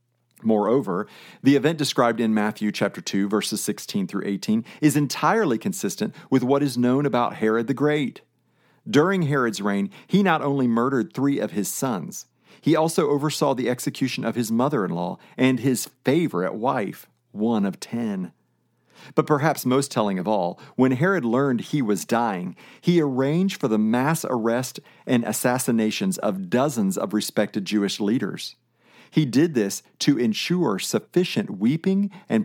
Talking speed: 155 wpm